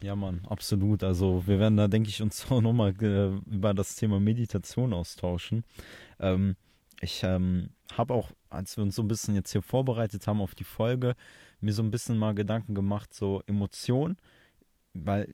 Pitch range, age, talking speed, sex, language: 100-120 Hz, 20-39, 180 wpm, male, German